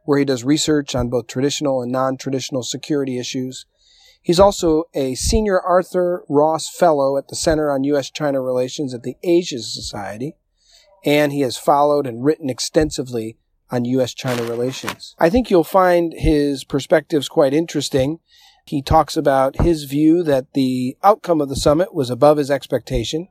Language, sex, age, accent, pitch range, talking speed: English, male, 40-59, American, 130-160 Hz, 155 wpm